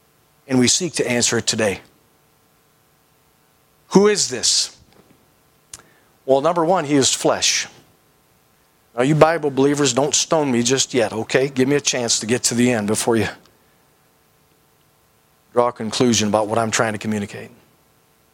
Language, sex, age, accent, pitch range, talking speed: English, male, 40-59, American, 135-180 Hz, 150 wpm